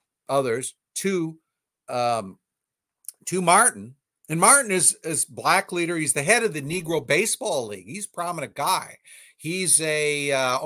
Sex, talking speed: male, 145 wpm